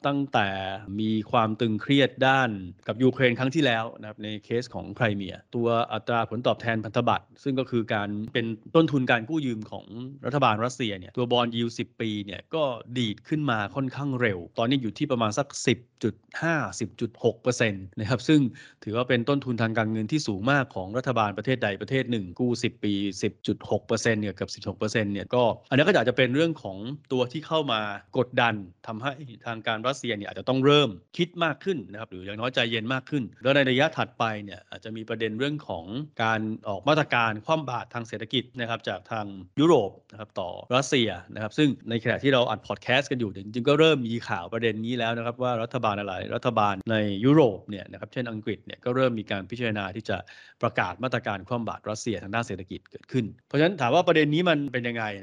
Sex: male